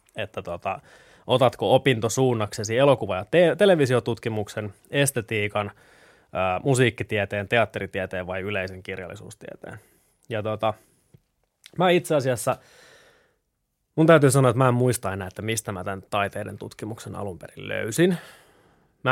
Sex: male